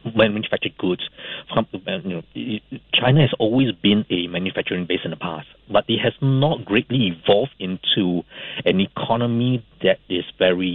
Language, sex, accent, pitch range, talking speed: English, male, Malaysian, 95-140 Hz, 135 wpm